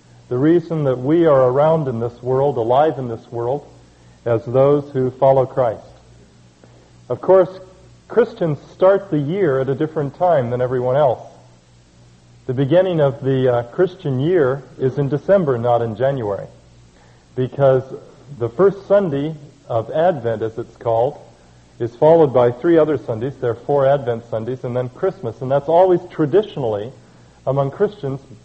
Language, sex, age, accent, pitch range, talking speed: English, male, 40-59, American, 120-165 Hz, 155 wpm